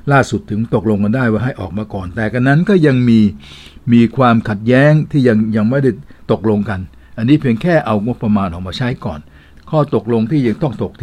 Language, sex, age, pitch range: Thai, male, 60-79, 100-115 Hz